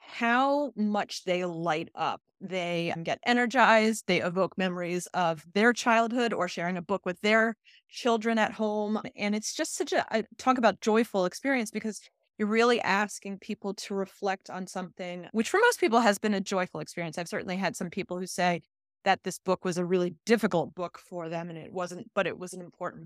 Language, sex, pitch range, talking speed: English, female, 180-215 Hz, 200 wpm